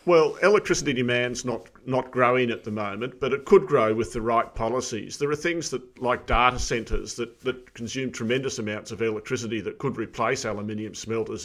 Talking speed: 190 wpm